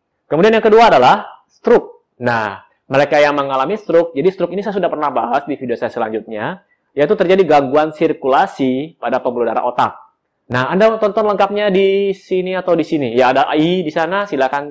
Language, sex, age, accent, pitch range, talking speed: Indonesian, male, 20-39, native, 130-180 Hz, 180 wpm